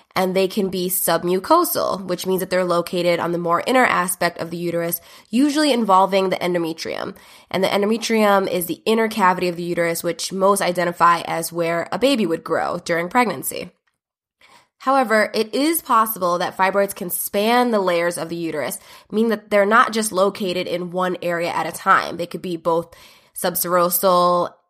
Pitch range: 175-215 Hz